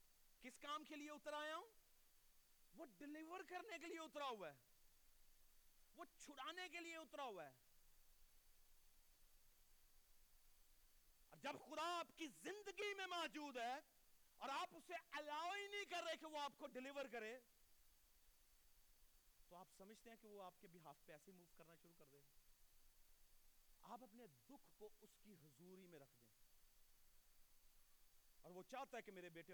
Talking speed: 55 wpm